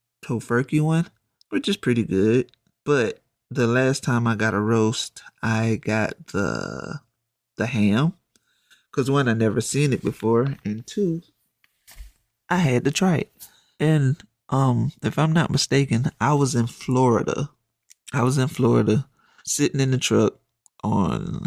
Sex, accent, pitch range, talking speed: male, American, 110-140 Hz, 145 wpm